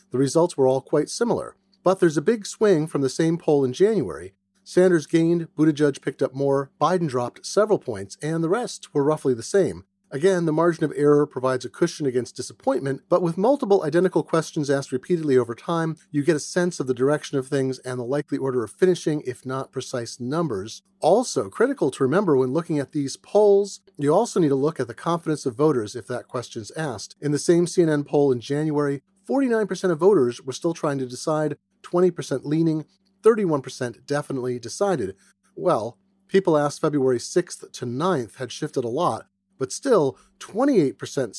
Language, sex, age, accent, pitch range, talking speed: English, male, 40-59, American, 135-185 Hz, 185 wpm